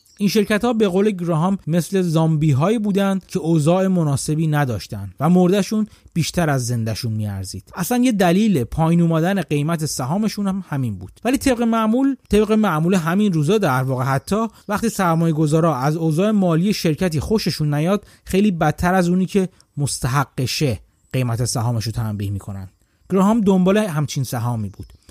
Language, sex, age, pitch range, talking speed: Persian, male, 30-49, 135-190 Hz, 155 wpm